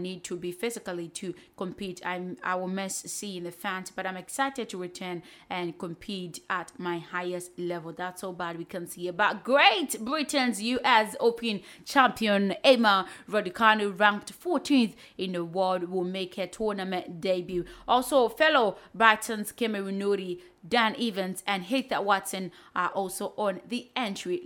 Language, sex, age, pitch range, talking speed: English, female, 20-39, 180-220 Hz, 150 wpm